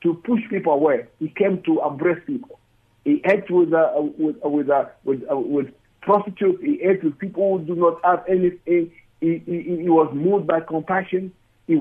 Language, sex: English, male